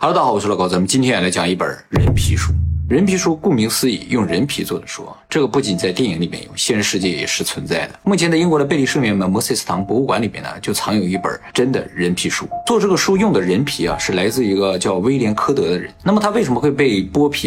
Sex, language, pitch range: male, Chinese, 95-165 Hz